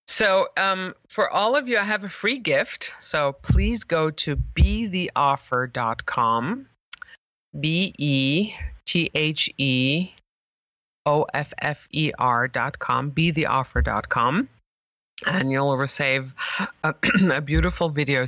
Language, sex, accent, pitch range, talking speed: English, female, American, 140-180 Hz, 80 wpm